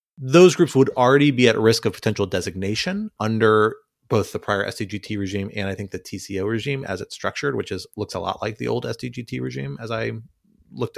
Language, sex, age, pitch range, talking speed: English, male, 30-49, 100-120 Hz, 210 wpm